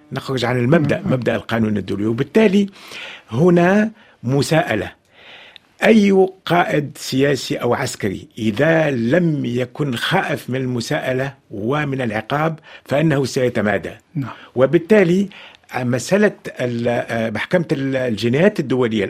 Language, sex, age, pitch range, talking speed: Arabic, male, 50-69, 125-165 Hz, 90 wpm